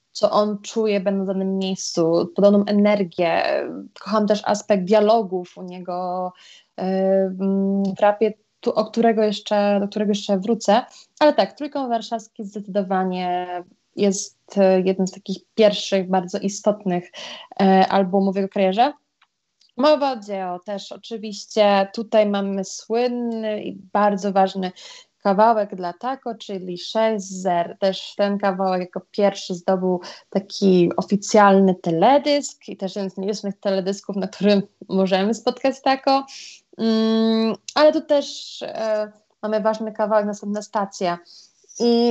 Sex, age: female, 20-39